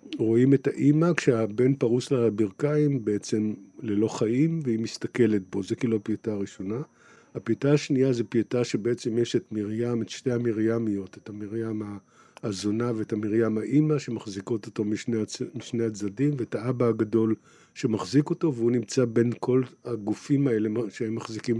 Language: Hebrew